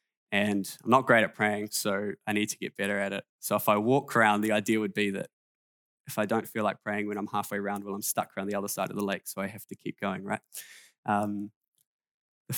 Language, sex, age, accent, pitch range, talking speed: English, male, 10-29, Australian, 100-115 Hz, 255 wpm